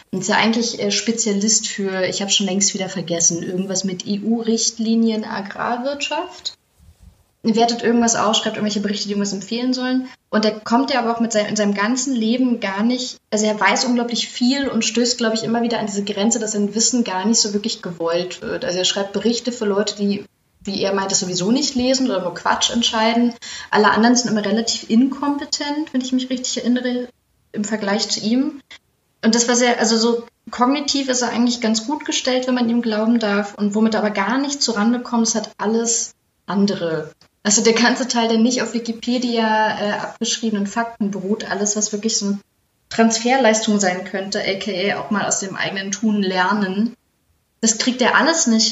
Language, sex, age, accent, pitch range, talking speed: German, female, 20-39, German, 200-240 Hz, 195 wpm